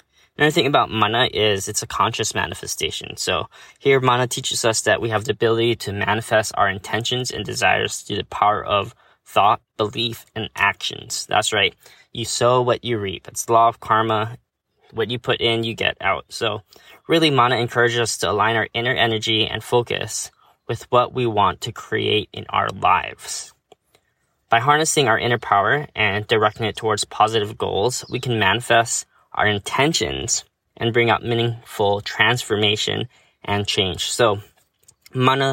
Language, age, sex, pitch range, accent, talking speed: English, 10-29, male, 110-120 Hz, American, 165 wpm